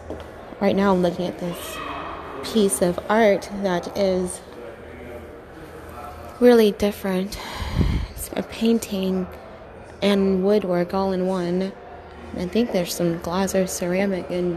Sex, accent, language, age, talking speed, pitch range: female, American, English, 20-39, 115 wpm, 180-210 Hz